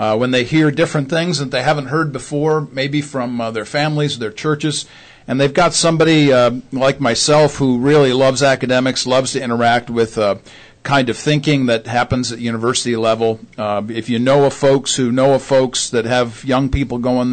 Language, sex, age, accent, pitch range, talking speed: English, male, 50-69, American, 120-145 Hz, 195 wpm